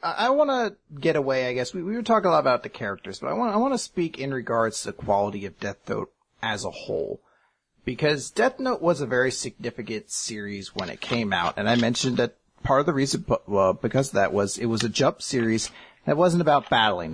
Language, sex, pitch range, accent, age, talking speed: English, male, 110-165 Hz, American, 30-49, 240 wpm